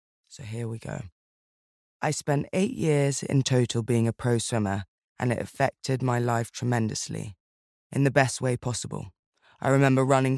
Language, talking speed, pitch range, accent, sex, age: English, 160 wpm, 115-130 Hz, British, female, 20-39